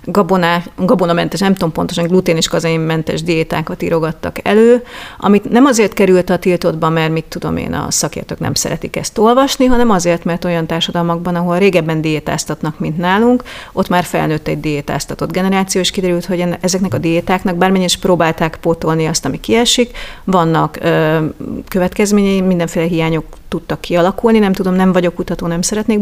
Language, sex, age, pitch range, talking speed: Hungarian, female, 30-49, 165-195 Hz, 155 wpm